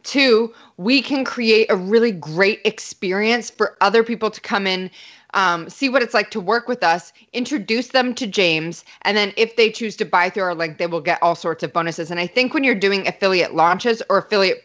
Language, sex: English, female